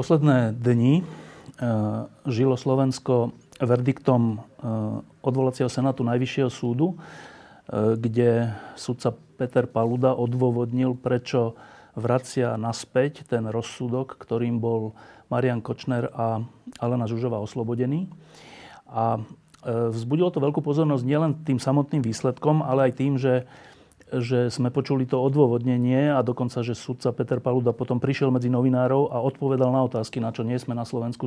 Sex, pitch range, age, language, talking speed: male, 115-130 Hz, 40-59, Slovak, 125 wpm